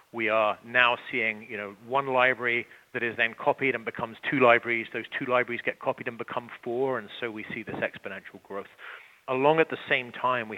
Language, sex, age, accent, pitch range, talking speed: English, male, 40-59, British, 105-120 Hz, 200 wpm